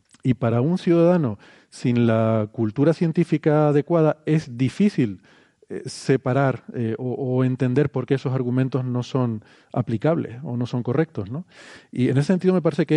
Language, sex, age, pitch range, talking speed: Spanish, male, 40-59, 120-160 Hz, 160 wpm